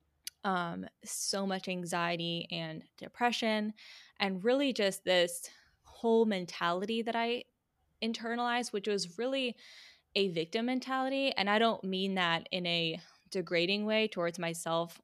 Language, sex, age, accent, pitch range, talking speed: English, female, 20-39, American, 170-210 Hz, 130 wpm